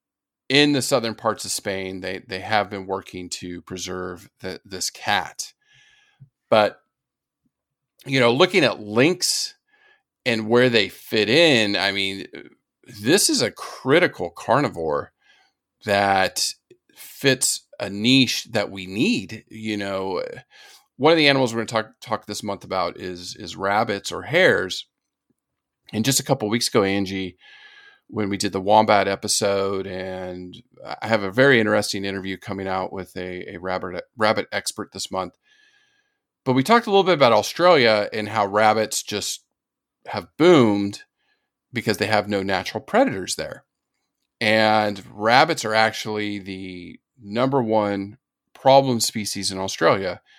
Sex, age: male, 40-59